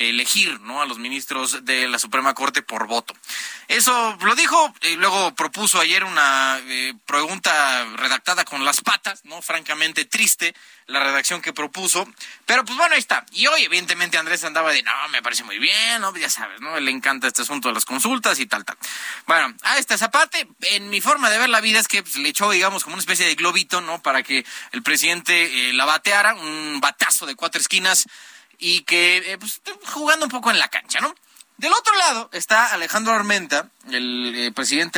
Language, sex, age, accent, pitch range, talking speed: Spanish, male, 30-49, Mexican, 140-220 Hz, 200 wpm